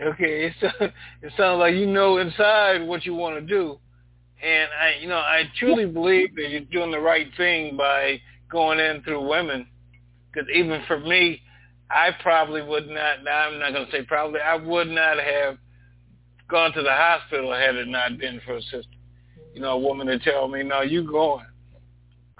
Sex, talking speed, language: male, 190 wpm, English